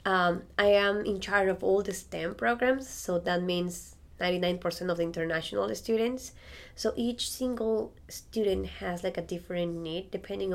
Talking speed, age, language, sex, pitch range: 160 wpm, 20-39, English, female, 180-225 Hz